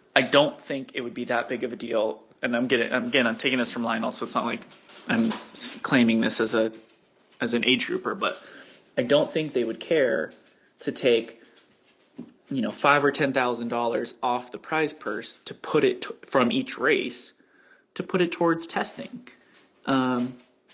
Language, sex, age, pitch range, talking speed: English, male, 20-39, 120-155 Hz, 185 wpm